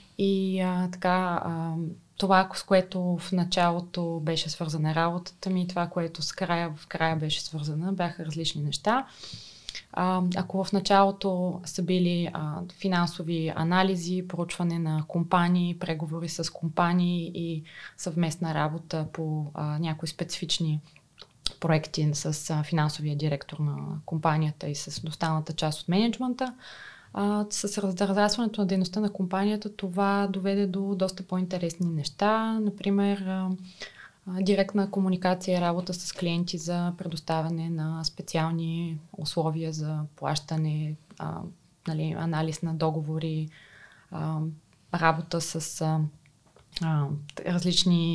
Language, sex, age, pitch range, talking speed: Bulgarian, female, 20-39, 160-185 Hz, 120 wpm